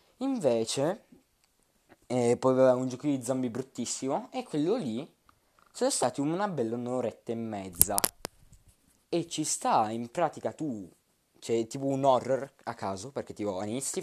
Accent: native